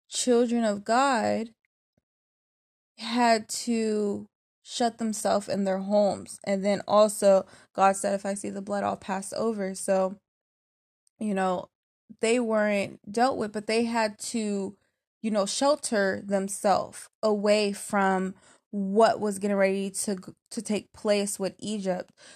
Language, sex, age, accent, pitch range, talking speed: English, female, 20-39, American, 195-220 Hz, 135 wpm